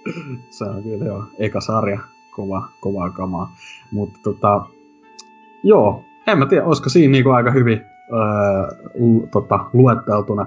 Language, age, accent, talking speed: Finnish, 30-49, native, 140 wpm